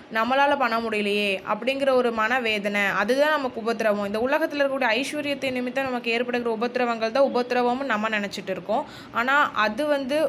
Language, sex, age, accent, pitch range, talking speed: Tamil, female, 20-39, native, 210-270 Hz, 145 wpm